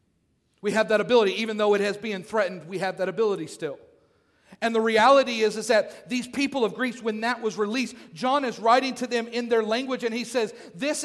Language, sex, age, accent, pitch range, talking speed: English, male, 40-59, American, 230-320 Hz, 225 wpm